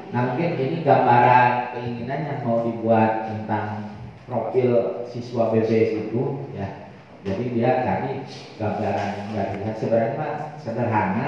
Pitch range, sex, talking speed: 110-145 Hz, male, 130 wpm